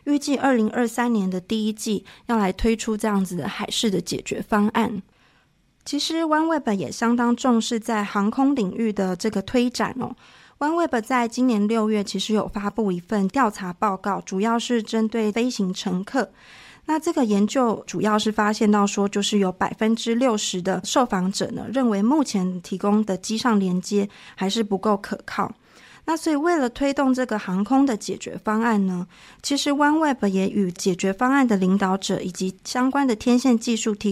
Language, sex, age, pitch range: Chinese, female, 20-39, 200-245 Hz